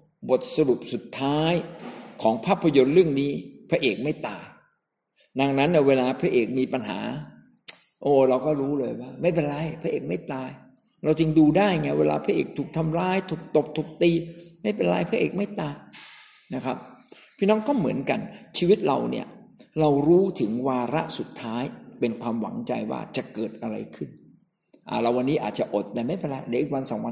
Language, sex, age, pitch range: Thai, male, 60-79, 130-200 Hz